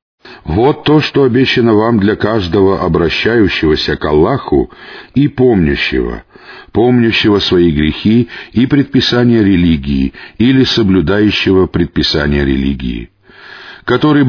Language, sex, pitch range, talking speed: Russian, male, 95-125 Hz, 95 wpm